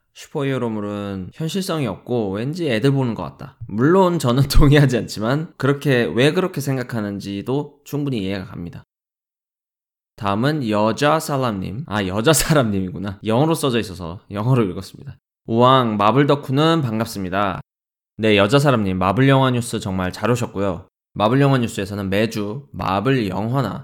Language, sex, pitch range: Korean, male, 100-135 Hz